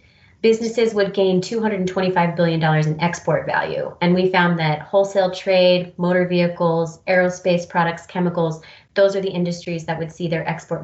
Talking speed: 155 wpm